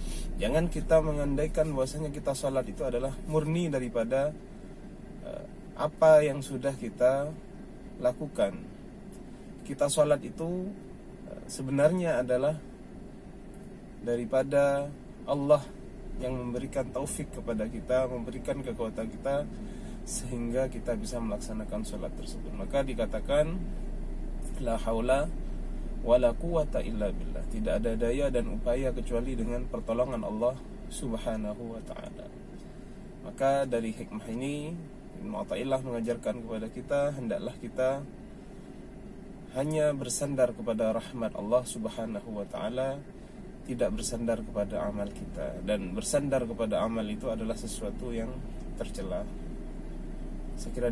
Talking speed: 105 wpm